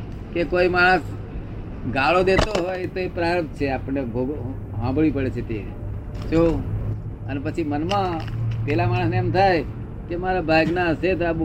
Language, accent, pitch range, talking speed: Gujarati, native, 115-180 Hz, 60 wpm